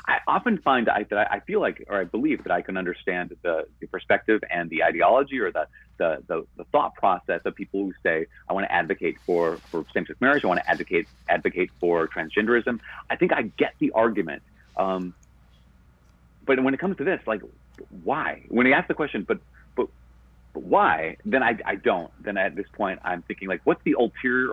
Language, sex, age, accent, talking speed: English, male, 40-59, American, 205 wpm